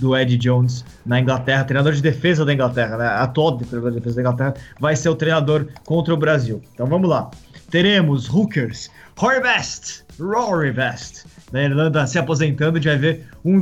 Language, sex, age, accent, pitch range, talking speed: Portuguese, male, 20-39, Brazilian, 140-175 Hz, 180 wpm